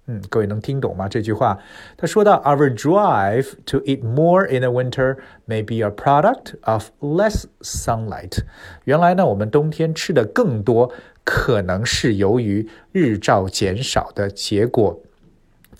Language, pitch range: Chinese, 105-135 Hz